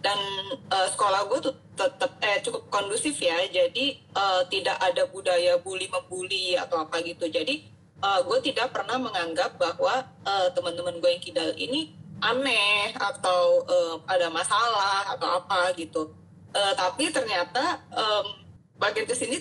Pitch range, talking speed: 195-280 Hz, 140 wpm